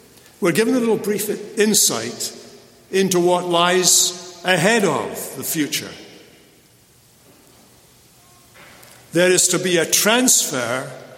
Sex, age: male, 60-79